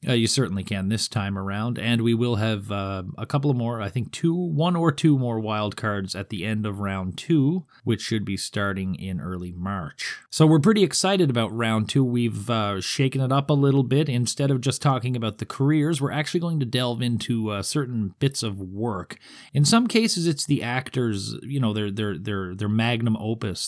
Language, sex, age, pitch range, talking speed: English, male, 30-49, 105-140 Hz, 215 wpm